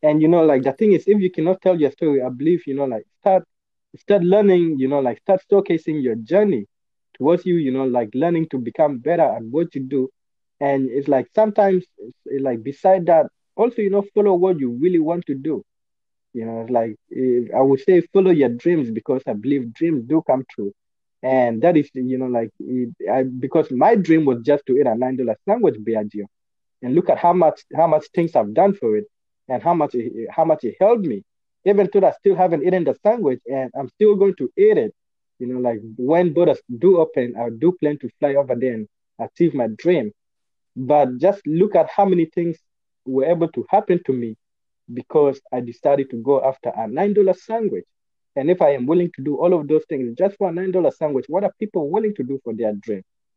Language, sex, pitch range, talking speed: English, male, 125-185 Hz, 220 wpm